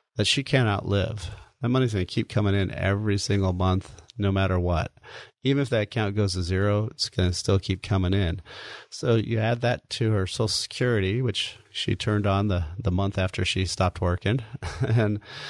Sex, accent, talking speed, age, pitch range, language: male, American, 190 wpm, 30-49, 95-115 Hz, English